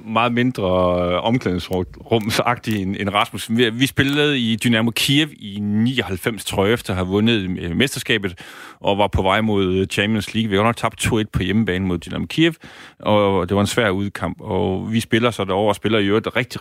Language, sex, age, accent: Danish, male, 30-49, native